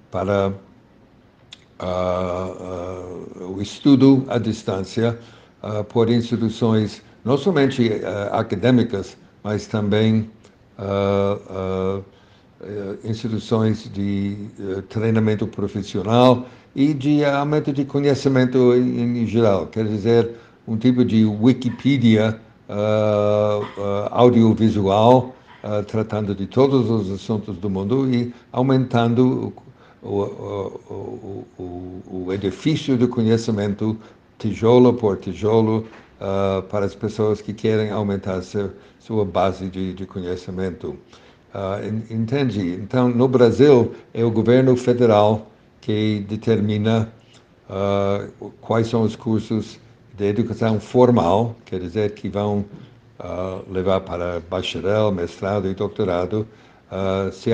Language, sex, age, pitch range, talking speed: Portuguese, male, 60-79, 100-115 Hz, 90 wpm